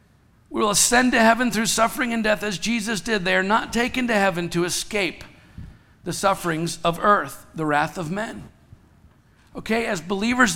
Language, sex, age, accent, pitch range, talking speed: English, male, 50-69, American, 170-215 Hz, 175 wpm